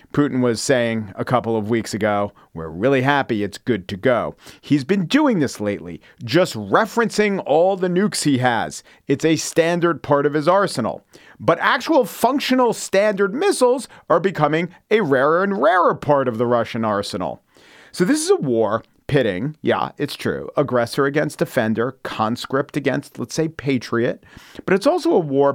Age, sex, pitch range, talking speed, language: 40-59, male, 120-170 Hz, 170 wpm, English